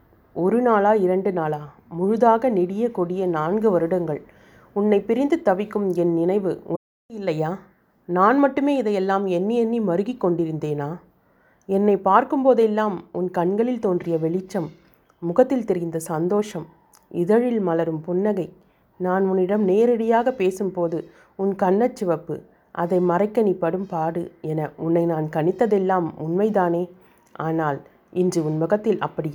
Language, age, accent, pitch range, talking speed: Tamil, 30-49, native, 165-205 Hz, 110 wpm